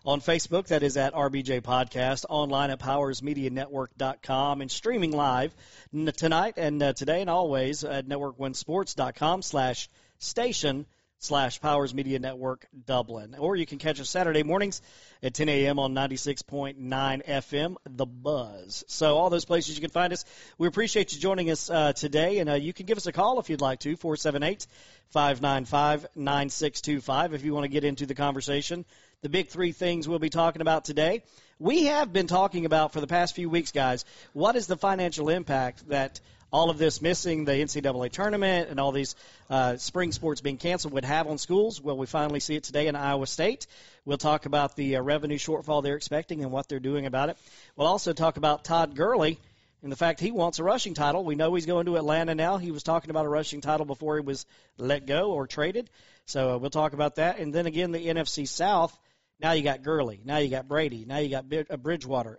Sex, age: male, 40-59